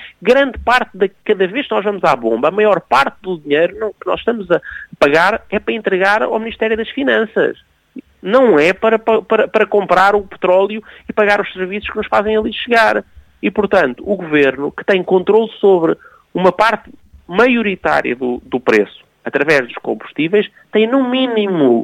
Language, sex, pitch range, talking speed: Portuguese, male, 165-220 Hz, 175 wpm